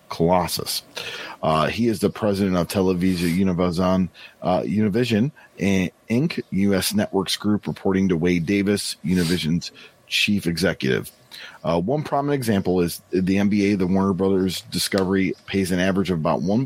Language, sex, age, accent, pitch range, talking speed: English, male, 40-59, American, 90-110 Hz, 135 wpm